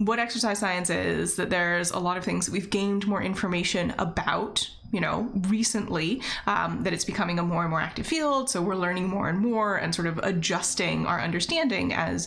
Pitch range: 180-235 Hz